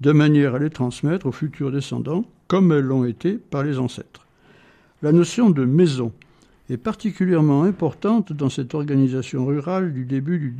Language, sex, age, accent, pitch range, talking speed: French, male, 60-79, French, 130-175 Hz, 165 wpm